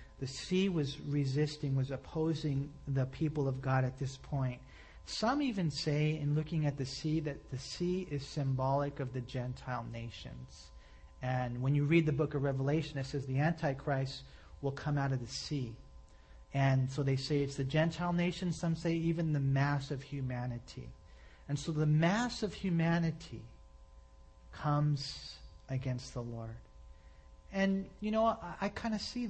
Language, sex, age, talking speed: English, male, 40-59, 165 wpm